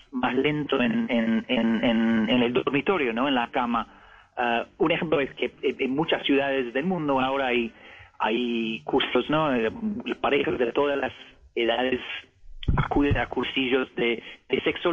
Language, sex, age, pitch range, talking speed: Spanish, male, 40-59, 125-160 Hz, 155 wpm